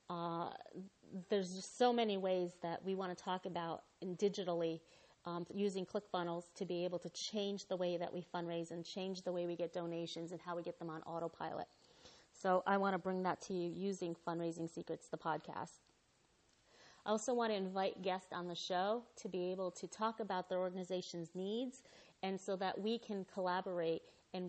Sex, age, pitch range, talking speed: female, 30-49, 175-200 Hz, 195 wpm